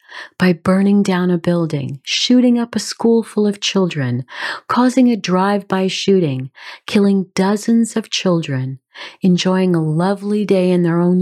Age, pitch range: 40-59, 160-210 Hz